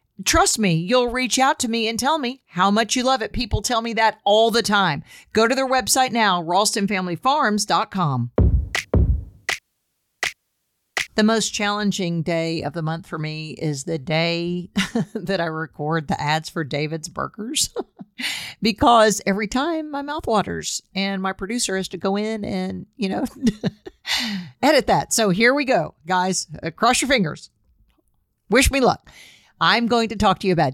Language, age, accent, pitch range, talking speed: English, 50-69, American, 165-220 Hz, 165 wpm